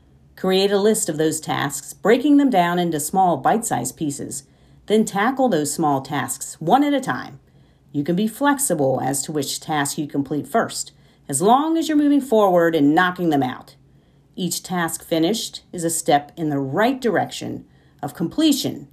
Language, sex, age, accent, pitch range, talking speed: English, female, 40-59, American, 155-230 Hz, 175 wpm